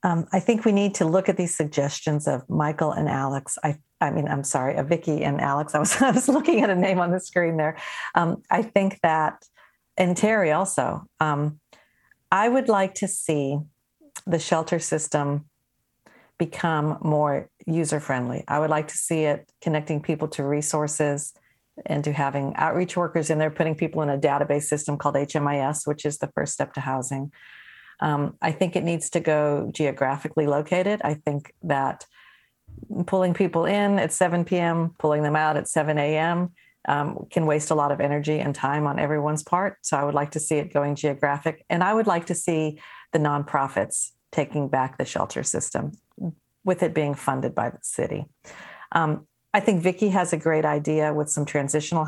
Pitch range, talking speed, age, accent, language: 145-175 Hz, 185 wpm, 50-69, American, English